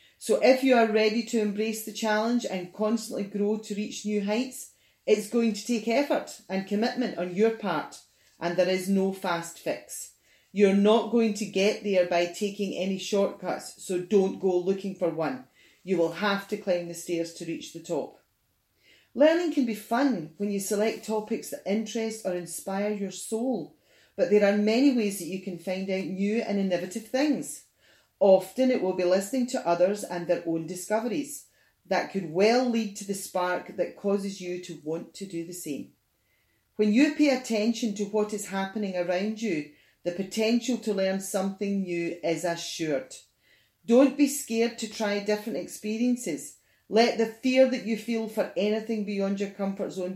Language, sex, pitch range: English, female, 185-225 Hz